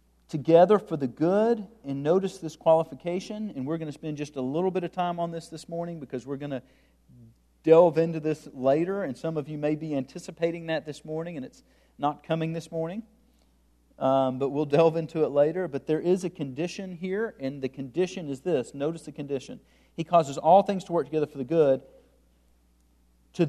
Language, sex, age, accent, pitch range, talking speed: English, male, 50-69, American, 125-170 Hz, 200 wpm